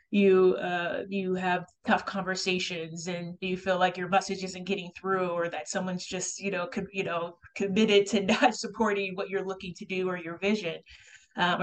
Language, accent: English, American